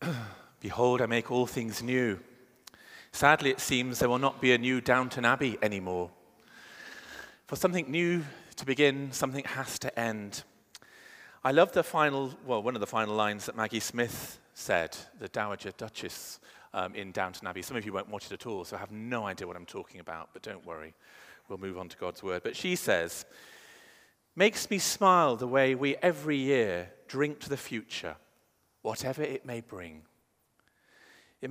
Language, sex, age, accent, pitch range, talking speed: English, male, 40-59, British, 110-135 Hz, 180 wpm